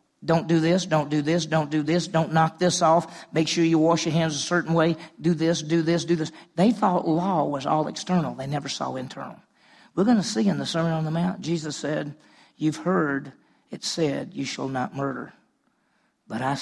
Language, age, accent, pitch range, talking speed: English, 50-69, American, 135-175 Hz, 215 wpm